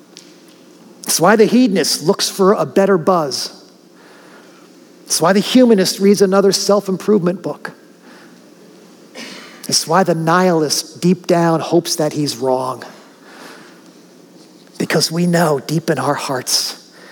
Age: 50-69